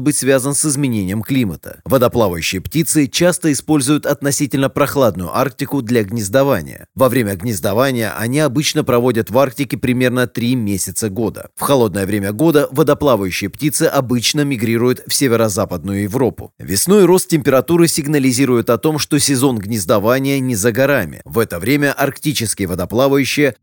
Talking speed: 135 wpm